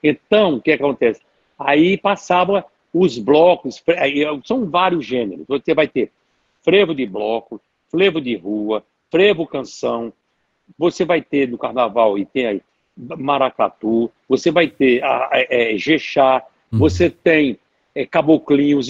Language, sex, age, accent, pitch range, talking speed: Portuguese, male, 60-79, Brazilian, 140-200 Hz, 120 wpm